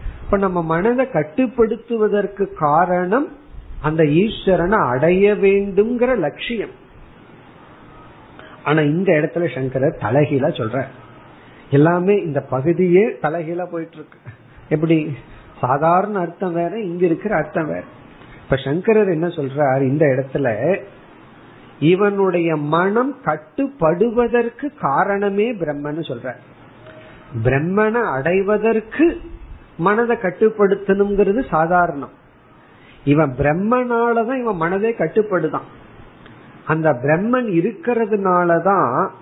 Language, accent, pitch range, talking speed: Tamil, native, 155-210 Hz, 75 wpm